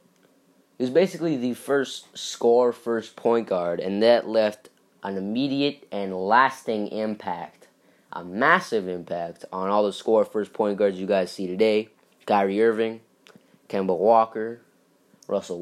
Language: English